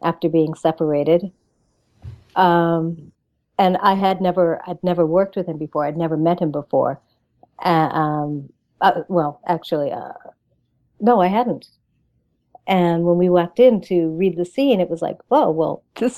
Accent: American